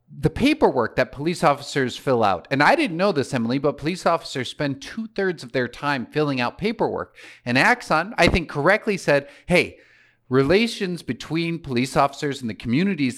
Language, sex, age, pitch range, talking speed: English, male, 40-59, 125-165 Hz, 180 wpm